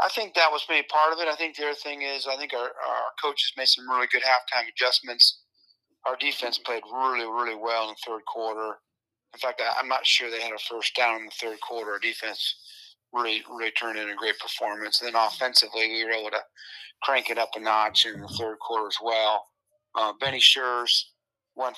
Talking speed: 225 wpm